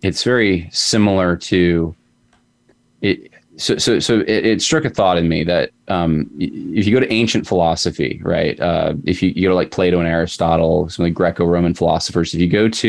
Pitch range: 90-115 Hz